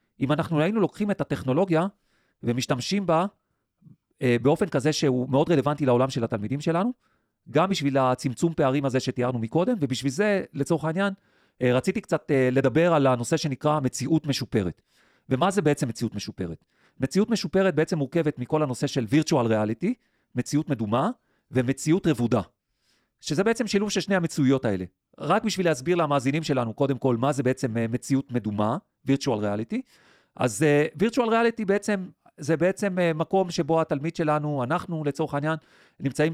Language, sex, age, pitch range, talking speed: Hebrew, male, 40-59, 130-170 Hz, 150 wpm